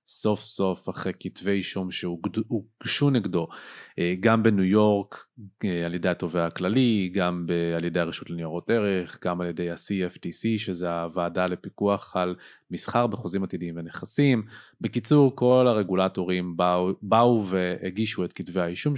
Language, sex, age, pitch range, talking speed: Hebrew, male, 30-49, 90-110 Hz, 130 wpm